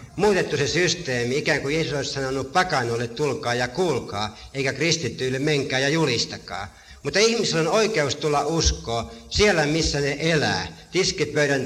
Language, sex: Finnish, male